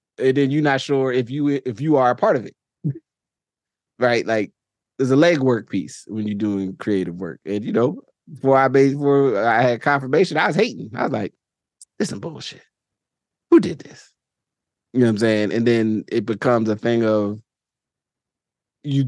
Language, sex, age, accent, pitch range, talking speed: English, male, 20-39, American, 105-130 Hz, 185 wpm